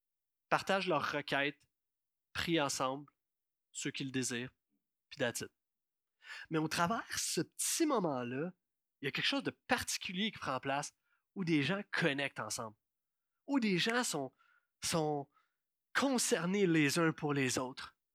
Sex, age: male, 30-49